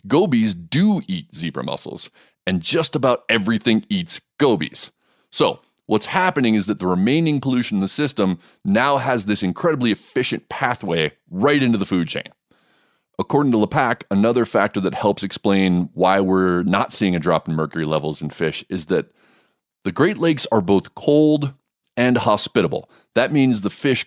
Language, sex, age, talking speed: English, male, 30-49, 165 wpm